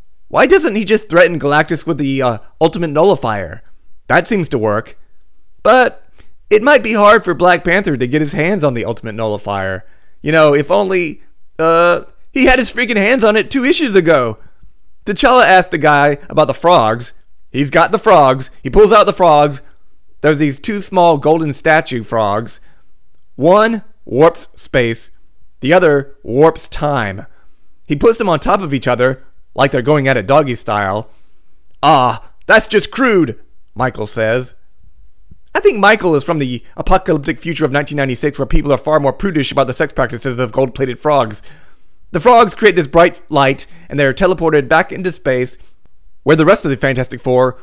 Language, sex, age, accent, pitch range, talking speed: English, male, 30-49, American, 125-170 Hz, 175 wpm